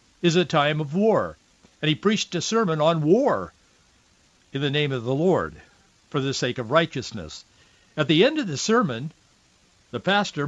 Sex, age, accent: male, 60-79, American